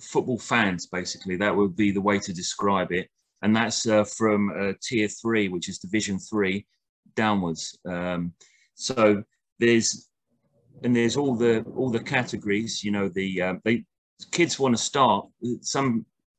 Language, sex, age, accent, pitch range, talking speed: English, male, 30-49, British, 100-115 Hz, 155 wpm